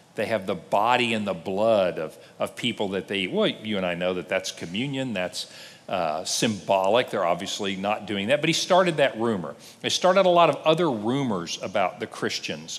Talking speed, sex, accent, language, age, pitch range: 200 wpm, male, American, English, 50-69, 120-195 Hz